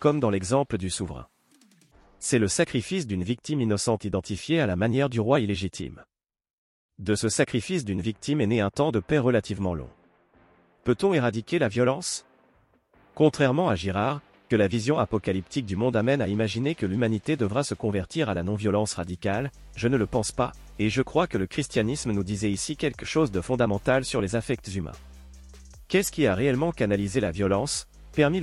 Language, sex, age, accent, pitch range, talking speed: French, male, 40-59, French, 100-130 Hz, 180 wpm